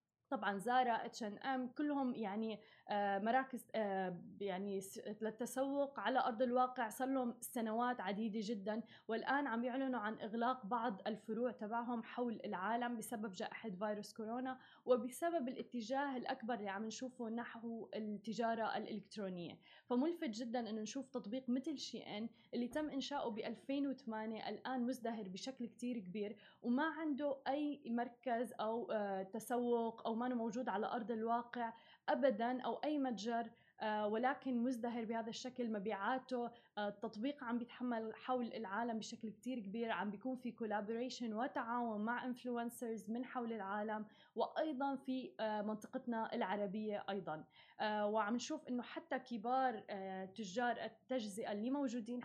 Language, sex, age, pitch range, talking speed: Arabic, female, 20-39, 220-255 Hz, 125 wpm